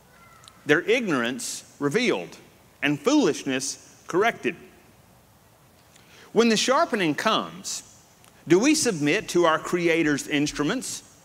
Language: English